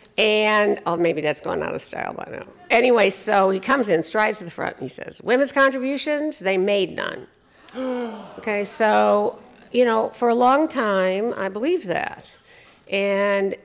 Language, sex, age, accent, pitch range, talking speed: English, female, 50-69, American, 165-230 Hz, 170 wpm